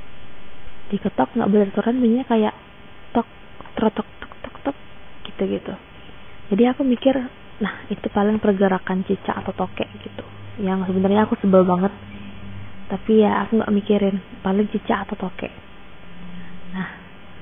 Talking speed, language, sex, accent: 140 wpm, Indonesian, female, native